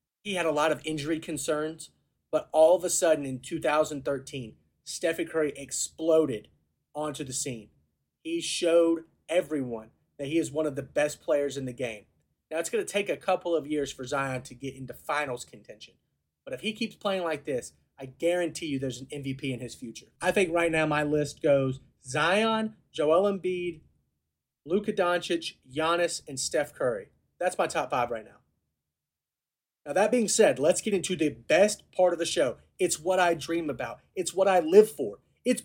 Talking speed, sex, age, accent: 190 wpm, male, 30-49, American